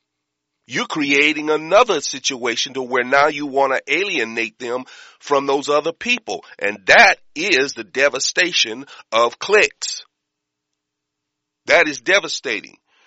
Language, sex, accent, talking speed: English, male, American, 125 wpm